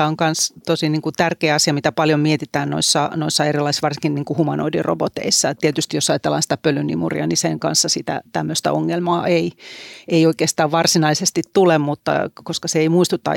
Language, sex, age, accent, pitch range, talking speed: Finnish, female, 40-59, native, 150-175 Hz, 165 wpm